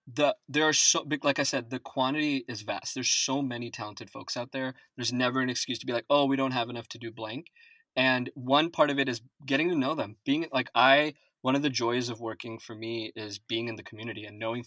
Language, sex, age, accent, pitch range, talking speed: English, male, 20-39, American, 115-140 Hz, 255 wpm